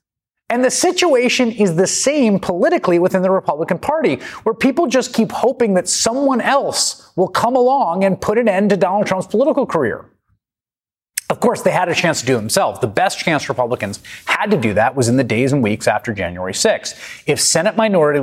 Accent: American